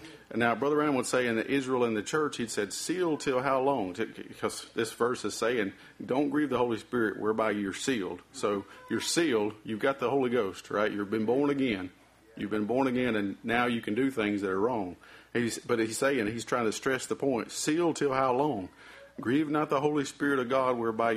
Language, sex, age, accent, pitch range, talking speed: English, male, 50-69, American, 105-130 Hz, 220 wpm